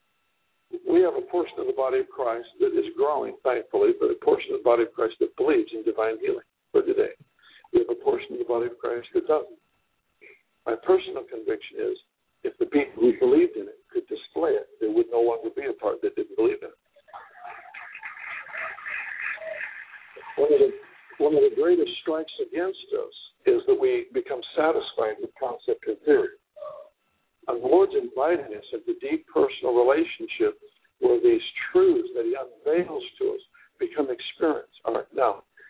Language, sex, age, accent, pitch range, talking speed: English, male, 60-79, American, 360-420 Hz, 180 wpm